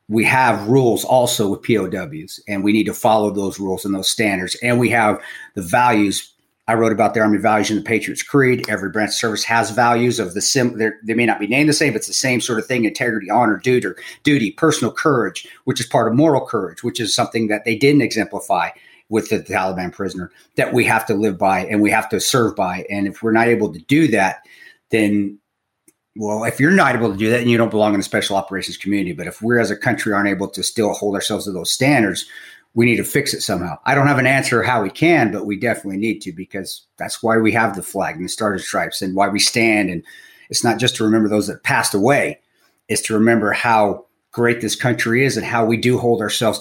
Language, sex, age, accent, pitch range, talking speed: English, male, 40-59, American, 100-120 Hz, 240 wpm